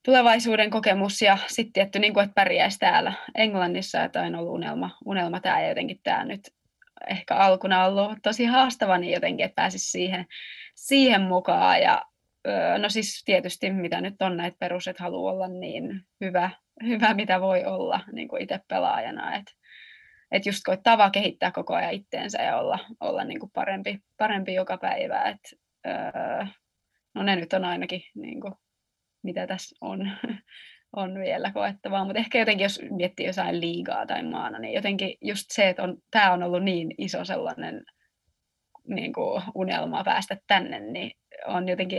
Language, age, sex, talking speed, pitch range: Finnish, 20-39, female, 155 wpm, 185-215 Hz